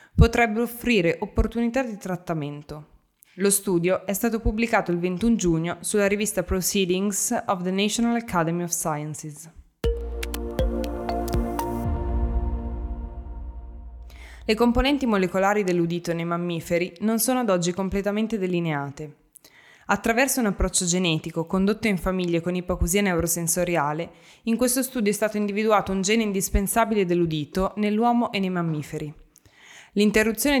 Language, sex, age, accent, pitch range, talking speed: Italian, female, 20-39, native, 170-210 Hz, 115 wpm